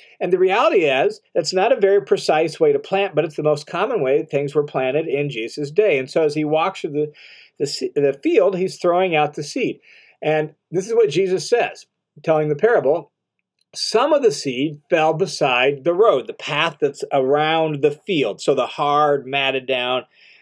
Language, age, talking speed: English, 40-59, 195 wpm